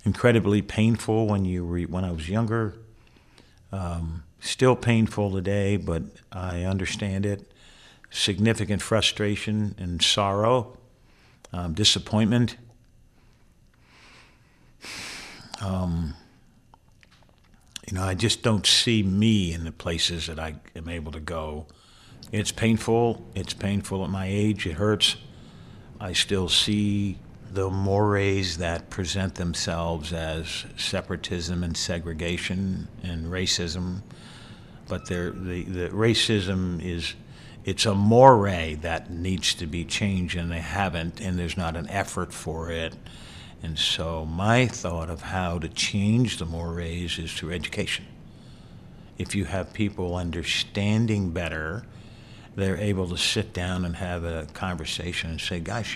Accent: American